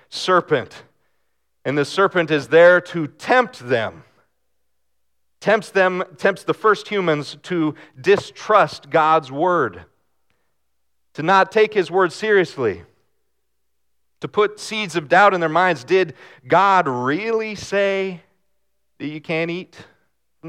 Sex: male